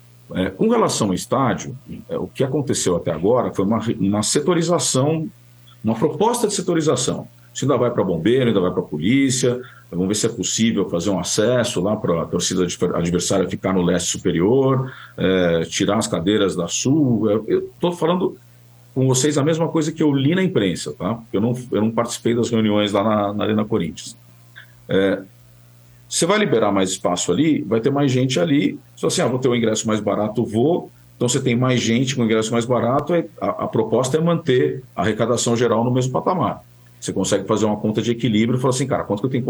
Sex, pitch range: male, 100-130 Hz